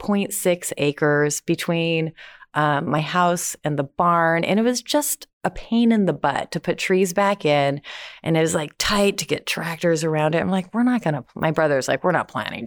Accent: American